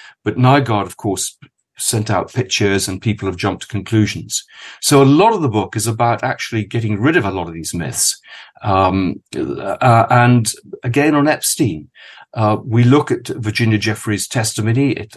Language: English